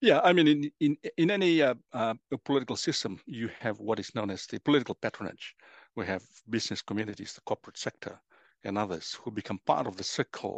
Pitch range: 105-135 Hz